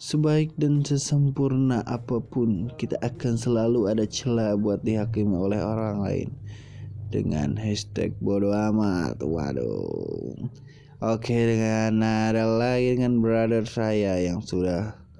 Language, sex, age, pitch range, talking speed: Indonesian, male, 20-39, 95-115 Hz, 110 wpm